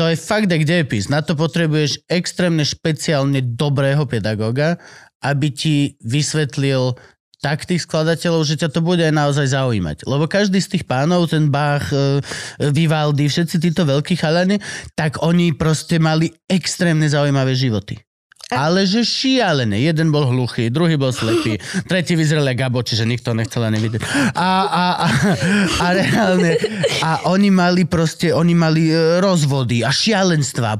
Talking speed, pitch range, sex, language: 150 wpm, 140-180 Hz, male, Slovak